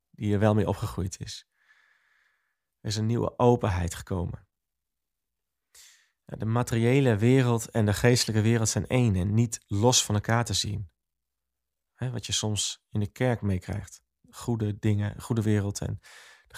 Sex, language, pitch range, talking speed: male, Dutch, 90-115 Hz, 150 wpm